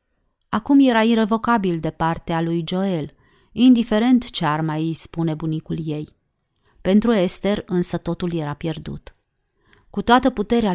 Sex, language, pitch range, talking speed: female, Romanian, 165-215 Hz, 135 wpm